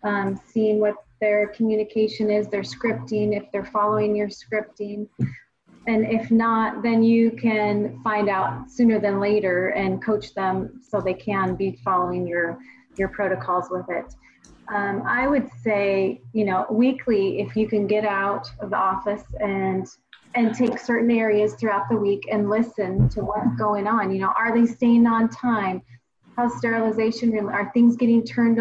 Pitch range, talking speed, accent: 200-225 Hz, 165 wpm, American